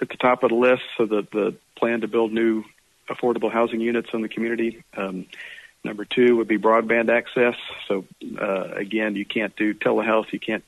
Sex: male